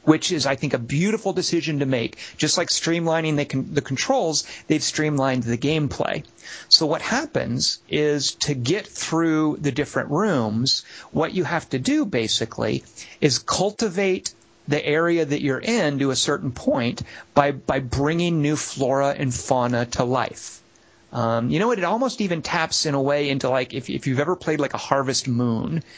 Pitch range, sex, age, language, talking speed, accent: 125-155 Hz, male, 30-49, English, 180 wpm, American